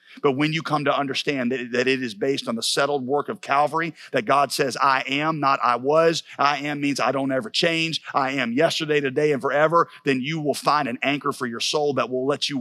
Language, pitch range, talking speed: English, 120-160 Hz, 240 wpm